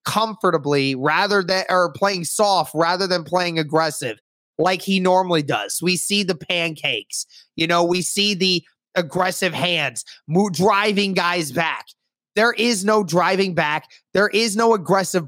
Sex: male